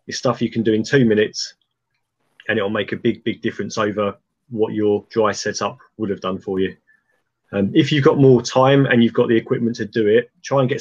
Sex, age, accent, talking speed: male, 20-39, British, 235 wpm